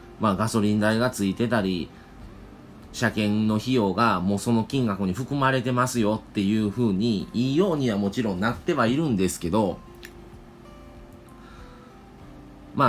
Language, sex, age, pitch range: Japanese, male, 30-49, 100-135 Hz